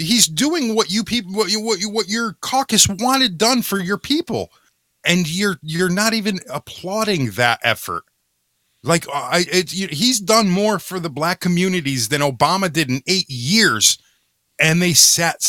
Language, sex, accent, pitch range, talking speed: English, male, American, 130-185 Hz, 180 wpm